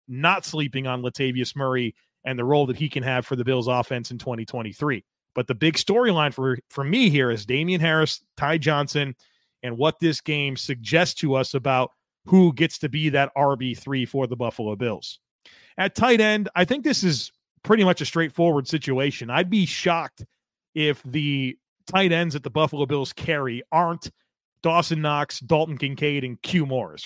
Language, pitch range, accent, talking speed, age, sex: English, 130-165 Hz, American, 180 wpm, 30-49, male